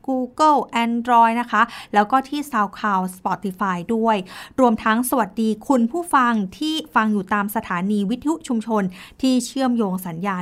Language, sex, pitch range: Thai, female, 205-255 Hz